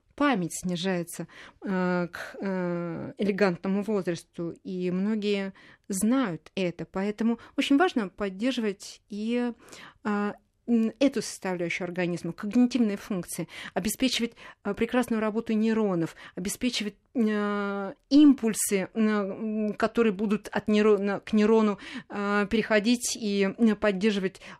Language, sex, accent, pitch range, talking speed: Russian, female, native, 185-225 Hz, 85 wpm